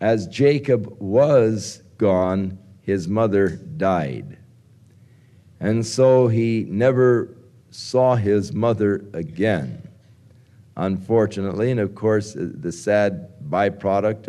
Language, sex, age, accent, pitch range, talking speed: English, male, 50-69, American, 100-120 Hz, 90 wpm